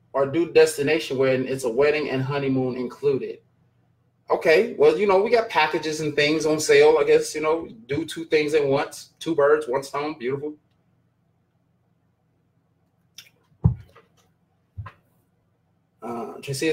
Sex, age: male, 20-39